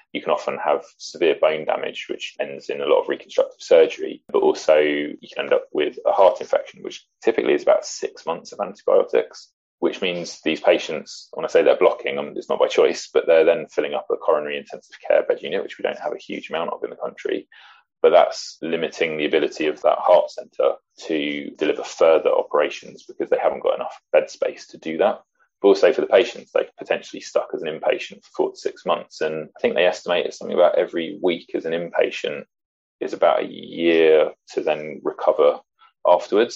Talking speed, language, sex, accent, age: 210 wpm, English, male, British, 20-39